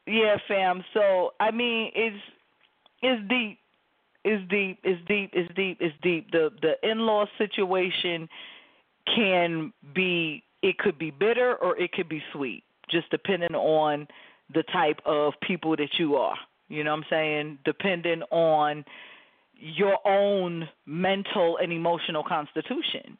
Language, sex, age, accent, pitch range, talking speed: English, female, 40-59, American, 155-195 Hz, 140 wpm